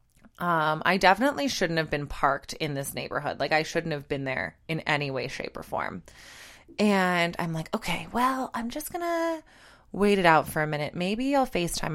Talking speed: 195 wpm